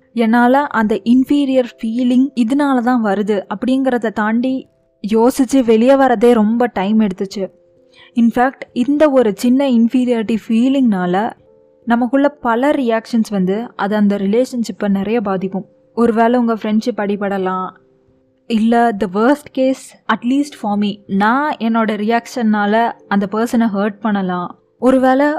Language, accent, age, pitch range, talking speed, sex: Tamil, native, 20-39, 210-250 Hz, 115 wpm, female